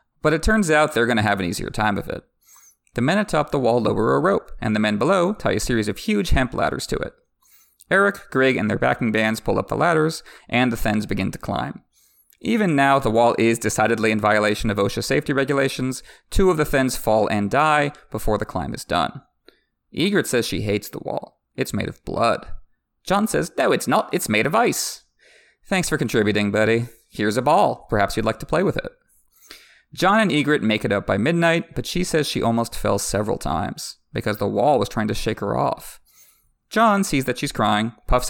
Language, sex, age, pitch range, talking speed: English, male, 30-49, 110-150 Hz, 215 wpm